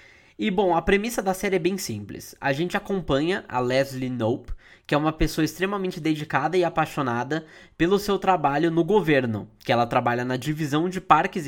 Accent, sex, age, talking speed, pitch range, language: Brazilian, male, 10-29, 185 wpm, 125-180 Hz, Portuguese